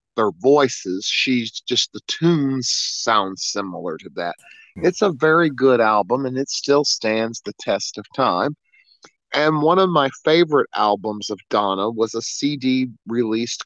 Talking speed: 155 wpm